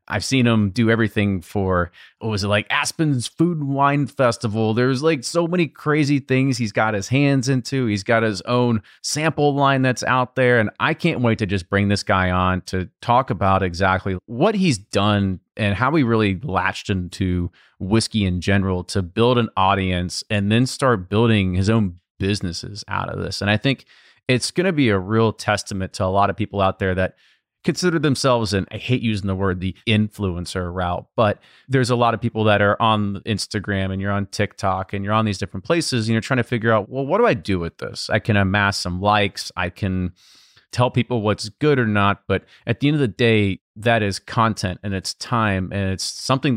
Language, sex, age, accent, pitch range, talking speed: English, male, 30-49, American, 95-120 Hz, 215 wpm